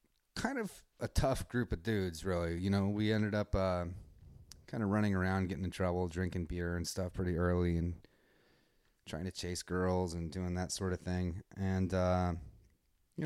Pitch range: 90-110 Hz